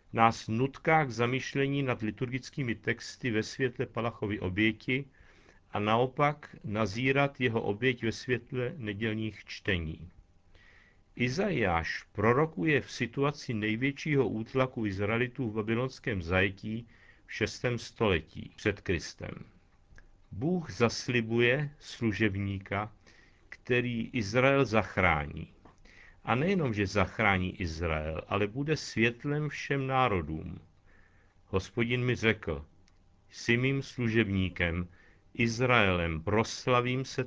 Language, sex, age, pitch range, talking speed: Czech, male, 50-69, 95-130 Hz, 95 wpm